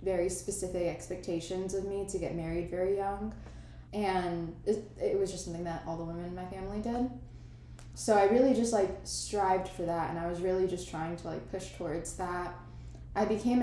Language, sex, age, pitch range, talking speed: English, female, 10-29, 170-205 Hz, 200 wpm